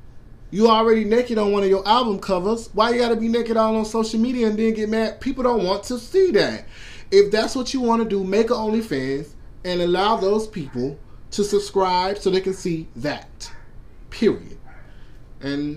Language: English